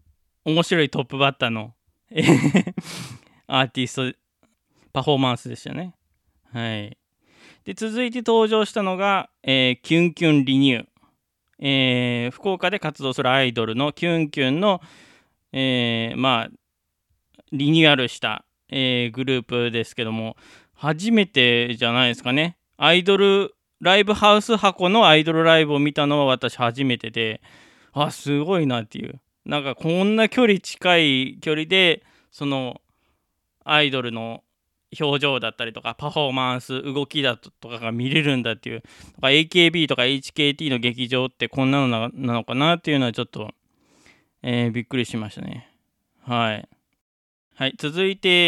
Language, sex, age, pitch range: Japanese, male, 20-39, 120-160 Hz